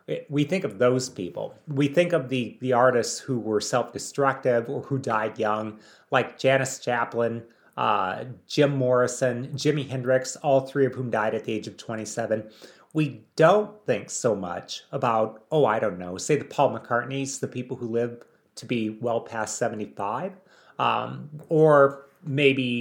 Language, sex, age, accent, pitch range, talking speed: English, male, 30-49, American, 115-140 Hz, 165 wpm